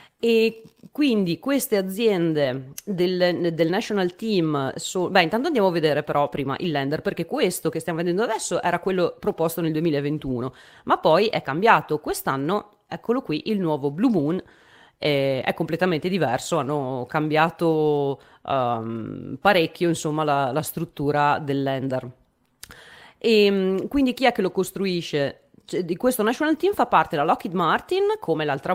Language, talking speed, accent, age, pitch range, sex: Italian, 145 wpm, native, 30-49, 150-195 Hz, female